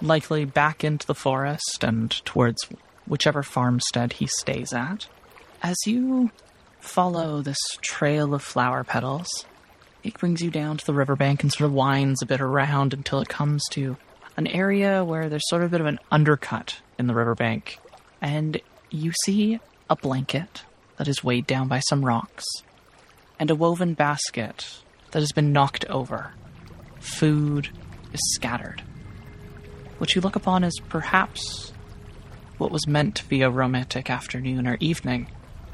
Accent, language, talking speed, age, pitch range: American, English, 155 wpm, 20-39, 125-160 Hz